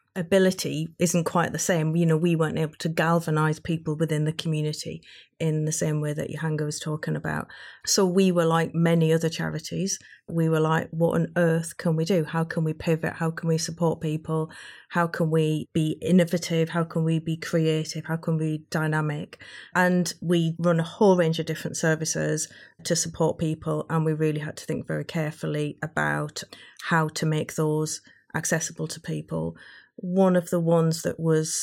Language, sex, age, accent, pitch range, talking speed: English, female, 30-49, British, 155-165 Hz, 190 wpm